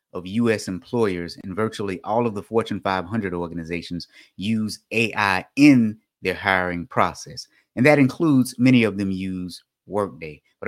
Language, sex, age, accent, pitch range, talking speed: English, male, 30-49, American, 90-120 Hz, 145 wpm